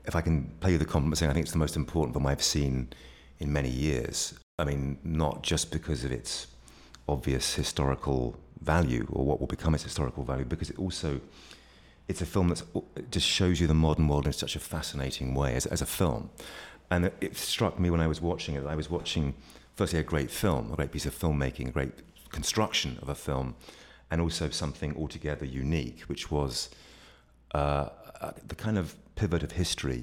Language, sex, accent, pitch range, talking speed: English, male, British, 70-85 Hz, 200 wpm